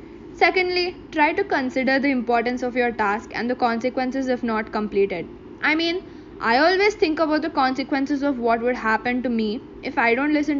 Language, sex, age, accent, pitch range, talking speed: English, female, 20-39, Indian, 240-330 Hz, 185 wpm